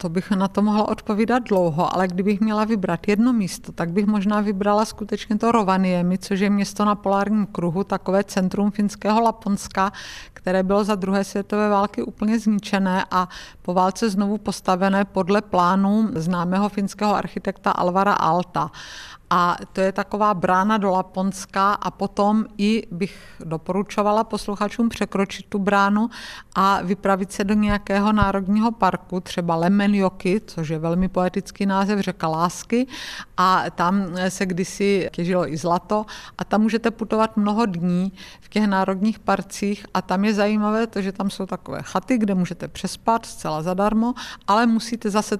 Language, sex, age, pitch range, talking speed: Czech, female, 50-69, 185-210 Hz, 155 wpm